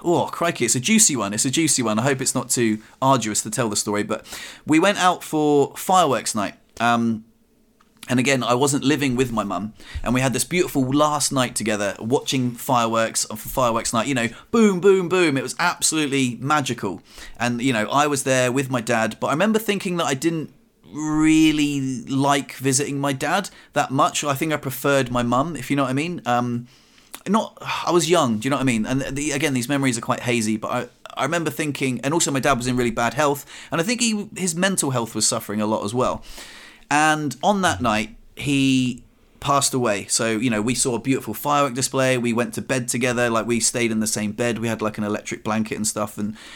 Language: English